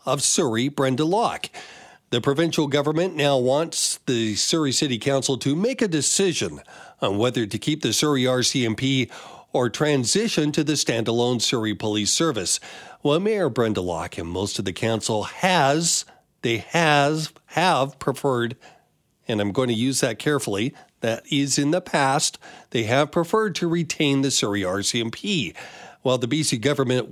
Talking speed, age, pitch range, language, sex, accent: 155 wpm, 40-59, 120-160 Hz, English, male, American